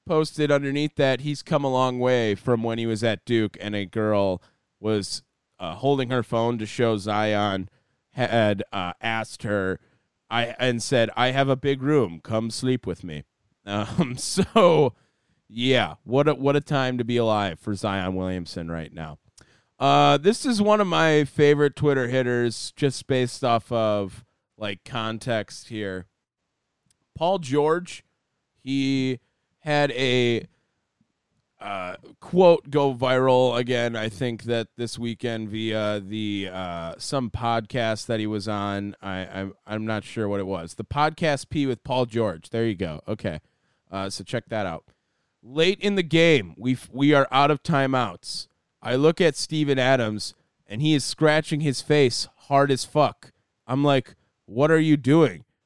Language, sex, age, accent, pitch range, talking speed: English, male, 30-49, American, 105-140 Hz, 160 wpm